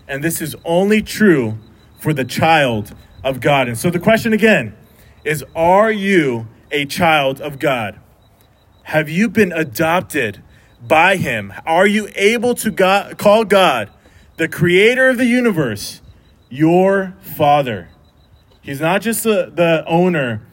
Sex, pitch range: male, 125-180 Hz